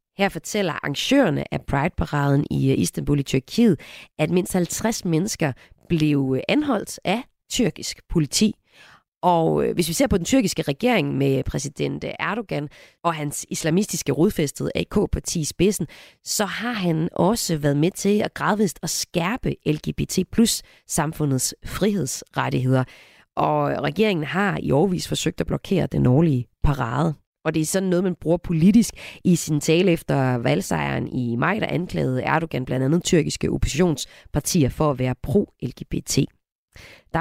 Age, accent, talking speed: 30-49, native, 140 wpm